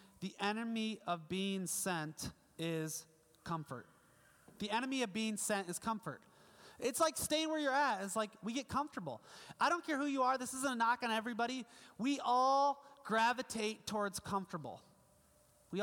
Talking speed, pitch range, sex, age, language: 165 wpm, 175-230 Hz, male, 30-49, English